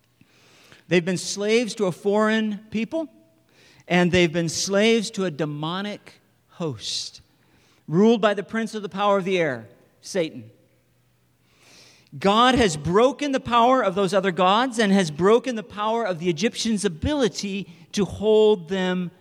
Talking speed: 145 wpm